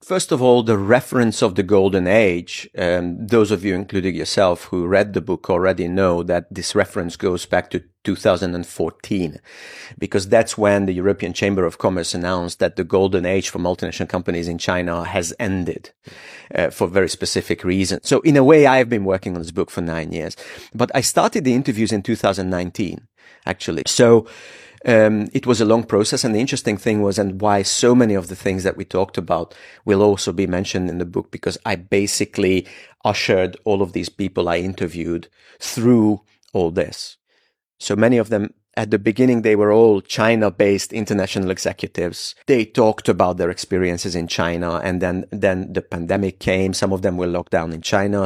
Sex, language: male, Chinese